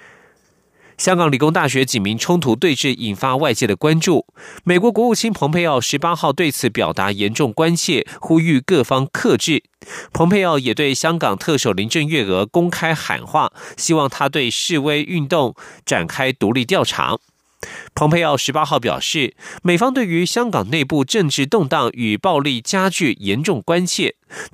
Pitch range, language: 125-175 Hz, Chinese